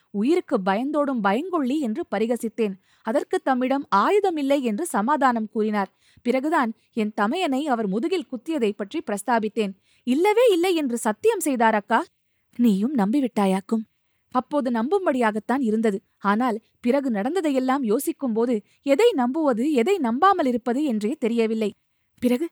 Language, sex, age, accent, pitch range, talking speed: Tamil, female, 20-39, native, 220-295 Hz, 105 wpm